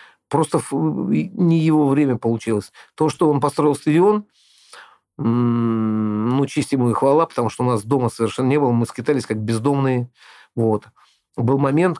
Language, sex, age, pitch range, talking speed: Russian, male, 50-69, 115-145 Hz, 145 wpm